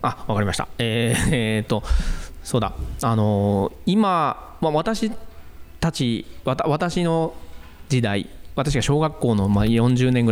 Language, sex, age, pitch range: Japanese, male, 20-39, 105-140 Hz